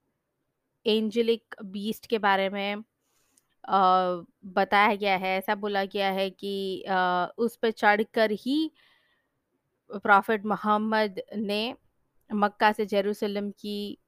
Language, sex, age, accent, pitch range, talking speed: Hindi, female, 20-39, native, 195-220 Hz, 100 wpm